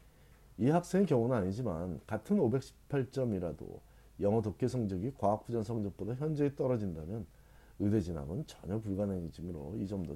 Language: Korean